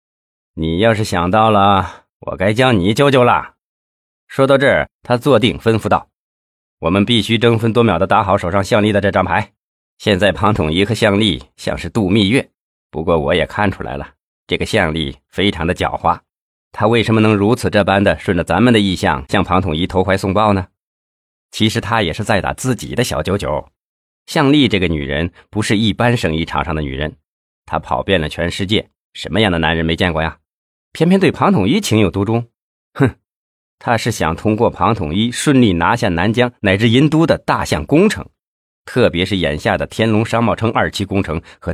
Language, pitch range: Chinese, 80-115 Hz